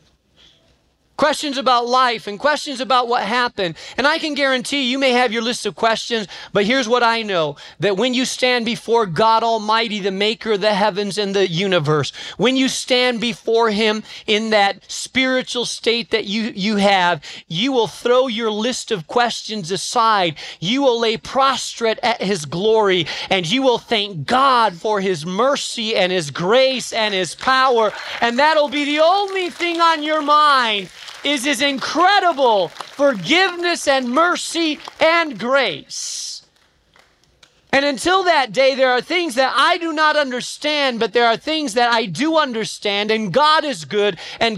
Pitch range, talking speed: 205-275 Hz, 165 wpm